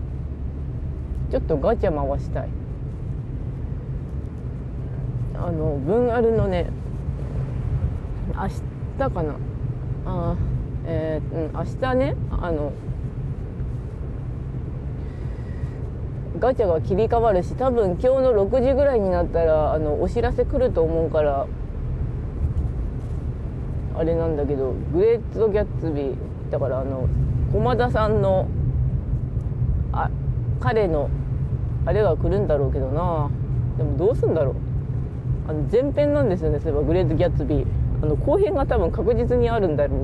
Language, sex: Japanese, female